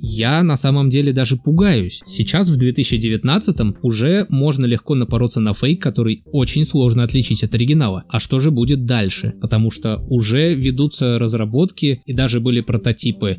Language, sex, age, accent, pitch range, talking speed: Russian, male, 20-39, native, 115-150 Hz, 155 wpm